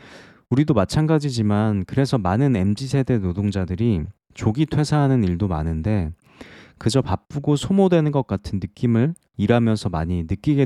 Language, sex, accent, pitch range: Korean, male, native, 95-140 Hz